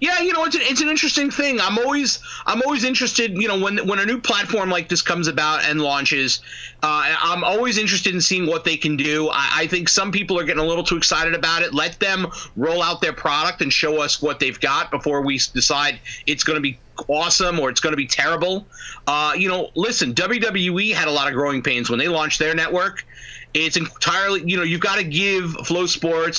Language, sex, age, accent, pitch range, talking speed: English, male, 30-49, American, 140-175 Hz, 230 wpm